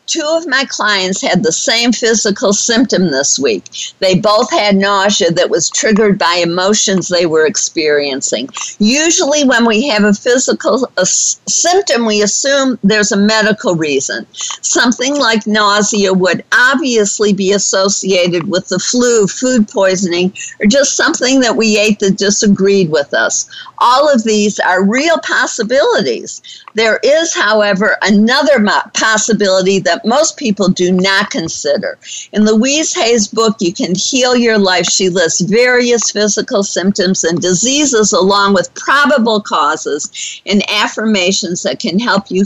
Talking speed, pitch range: 145 wpm, 185-235 Hz